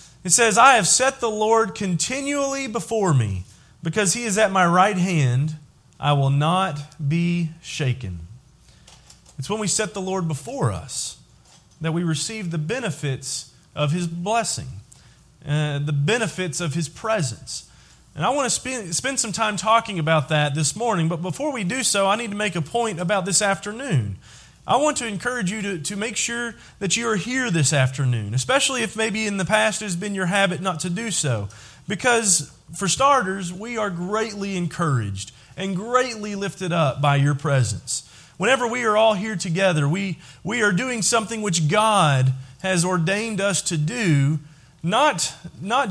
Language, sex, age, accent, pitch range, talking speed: English, male, 30-49, American, 150-215 Hz, 175 wpm